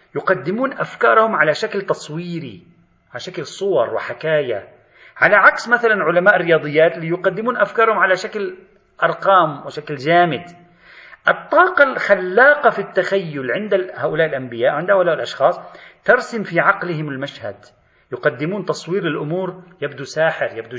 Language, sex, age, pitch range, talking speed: Arabic, male, 40-59, 140-200 Hz, 120 wpm